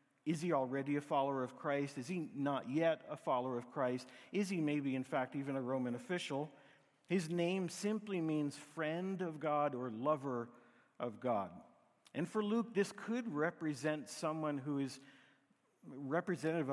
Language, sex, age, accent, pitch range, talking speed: English, male, 50-69, American, 130-165 Hz, 160 wpm